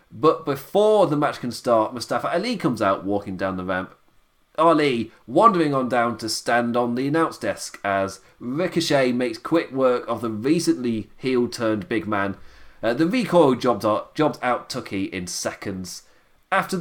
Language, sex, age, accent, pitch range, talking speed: English, male, 30-49, British, 110-155 Hz, 160 wpm